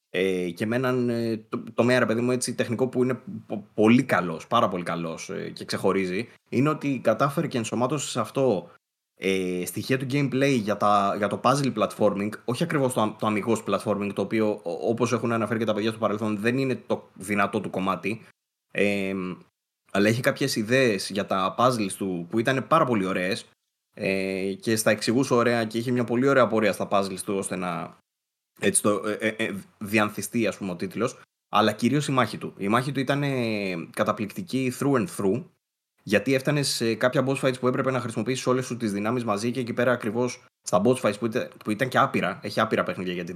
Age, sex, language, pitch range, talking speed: 20-39, male, Greek, 100-125 Hz, 190 wpm